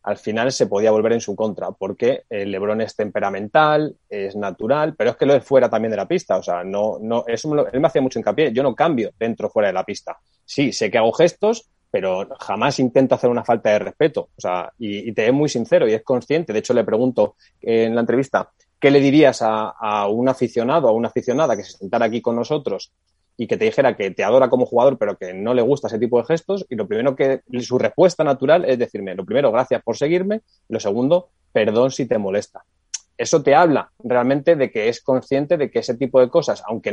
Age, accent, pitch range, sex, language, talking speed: 20-39, Spanish, 110-155 Hz, male, Spanish, 240 wpm